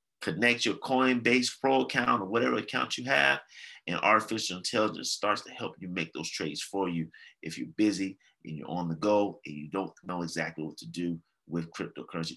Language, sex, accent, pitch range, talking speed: English, male, American, 100-140 Hz, 195 wpm